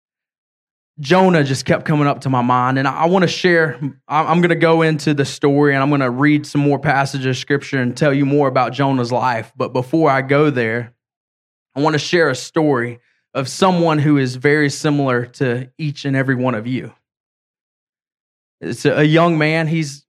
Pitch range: 135-165 Hz